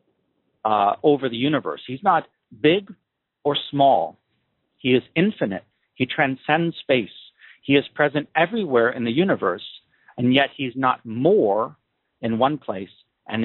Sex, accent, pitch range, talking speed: male, American, 110-145 Hz, 140 wpm